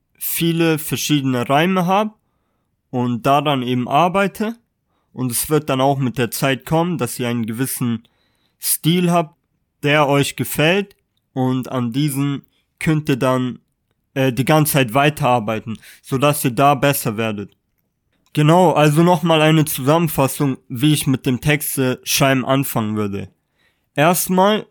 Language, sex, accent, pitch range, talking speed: German, male, German, 125-165 Hz, 140 wpm